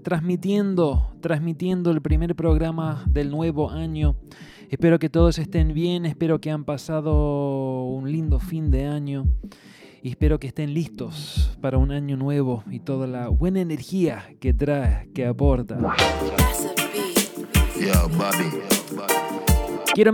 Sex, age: male, 20-39